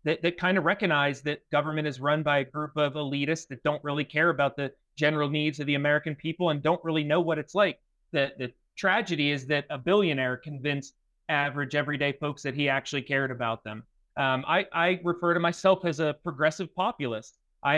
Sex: male